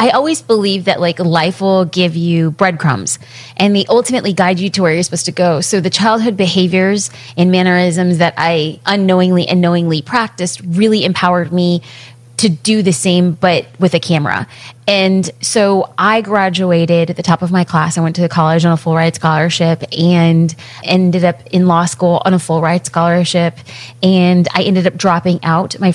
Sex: female